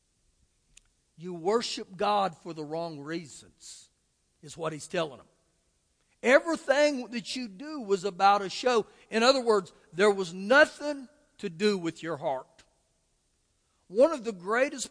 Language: English